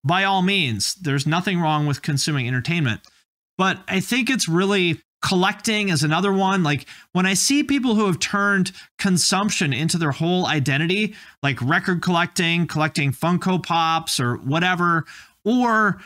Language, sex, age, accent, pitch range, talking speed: English, male, 30-49, American, 155-200 Hz, 150 wpm